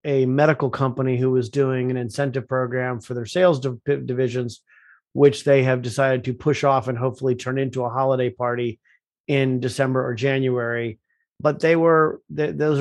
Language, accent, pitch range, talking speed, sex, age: English, American, 130-150 Hz, 175 wpm, male, 30-49